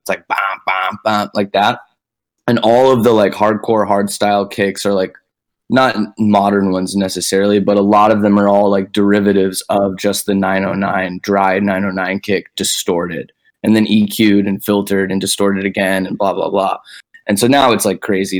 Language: English